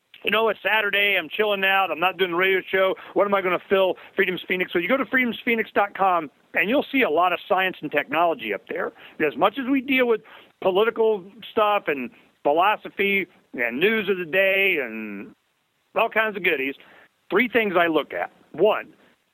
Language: English